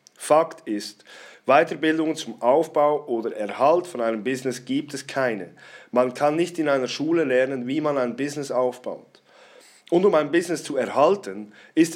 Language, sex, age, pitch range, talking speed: German, male, 40-59, 120-150 Hz, 160 wpm